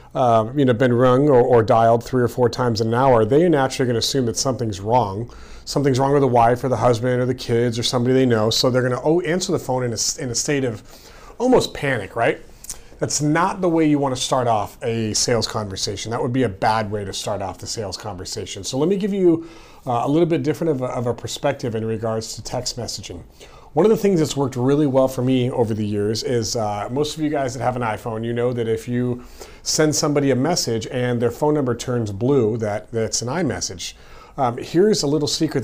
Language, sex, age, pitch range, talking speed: English, male, 40-59, 115-140 Hz, 240 wpm